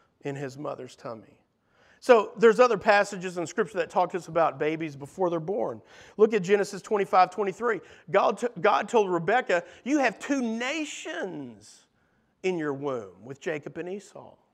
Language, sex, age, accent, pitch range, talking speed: English, male, 50-69, American, 185-275 Hz, 160 wpm